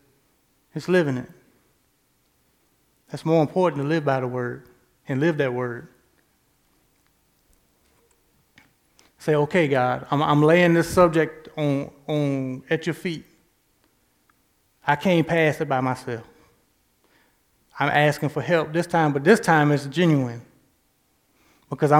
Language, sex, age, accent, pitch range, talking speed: English, male, 20-39, American, 140-170 Hz, 125 wpm